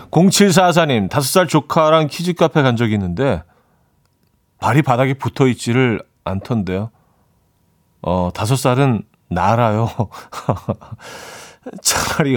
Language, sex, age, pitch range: Korean, male, 40-59, 110-155 Hz